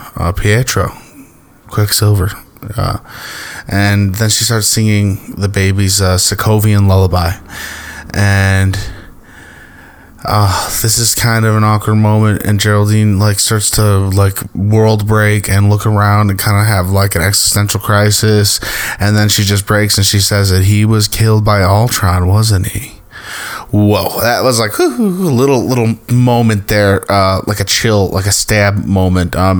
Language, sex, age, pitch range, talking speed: English, male, 20-39, 95-110 Hz, 155 wpm